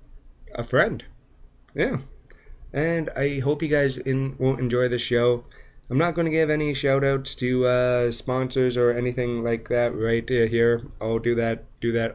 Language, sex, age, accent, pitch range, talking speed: English, male, 20-39, American, 110-135 Hz, 170 wpm